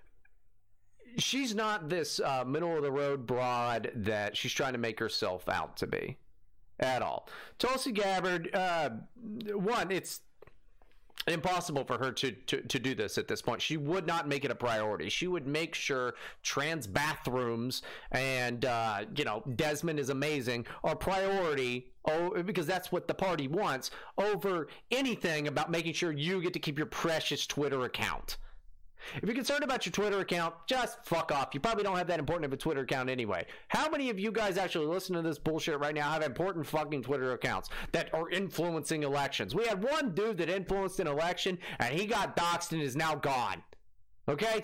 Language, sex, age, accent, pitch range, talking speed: English, male, 30-49, American, 140-195 Hz, 180 wpm